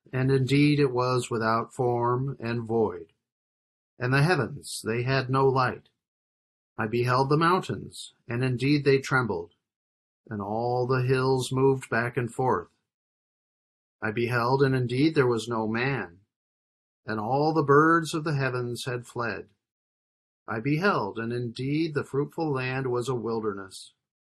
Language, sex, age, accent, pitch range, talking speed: English, male, 50-69, American, 110-140 Hz, 145 wpm